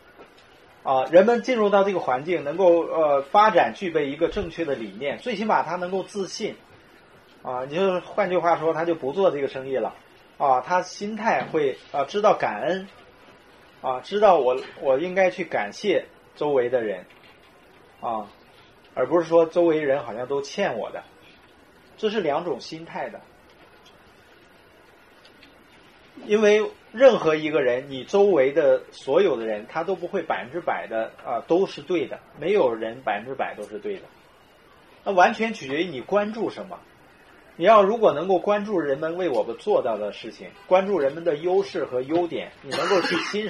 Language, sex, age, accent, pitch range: Chinese, male, 30-49, native, 160-210 Hz